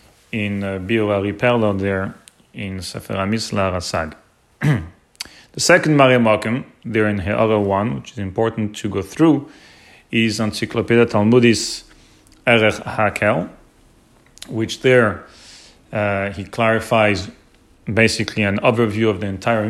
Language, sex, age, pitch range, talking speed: English, male, 30-49, 100-120 Hz, 120 wpm